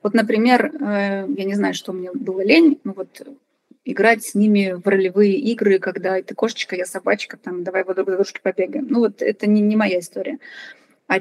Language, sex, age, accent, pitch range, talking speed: Russian, female, 20-39, native, 205-270 Hz, 205 wpm